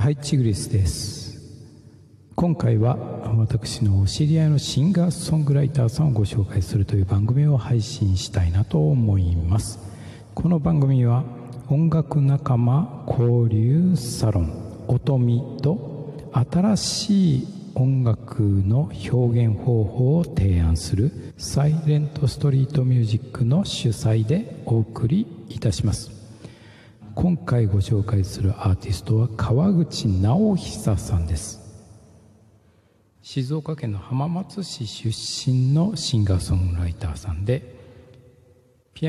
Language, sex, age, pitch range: Japanese, male, 60-79, 105-145 Hz